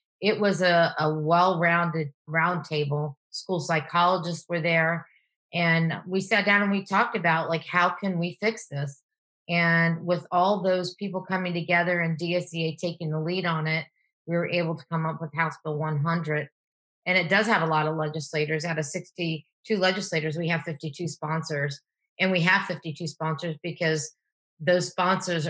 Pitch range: 160-190 Hz